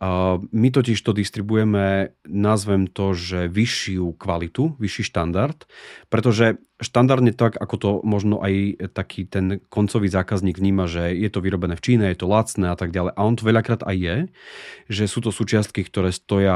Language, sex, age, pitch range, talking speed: Slovak, male, 30-49, 95-110 Hz, 170 wpm